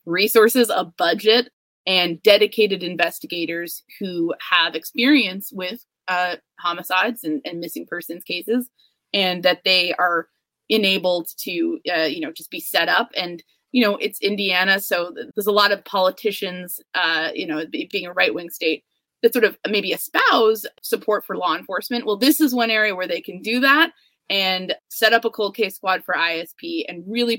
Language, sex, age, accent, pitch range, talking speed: English, female, 20-39, American, 180-240 Hz, 175 wpm